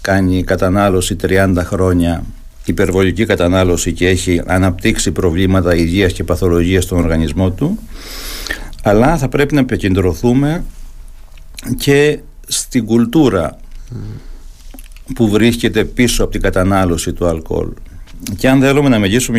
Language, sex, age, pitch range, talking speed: Greek, male, 60-79, 95-125 Hz, 115 wpm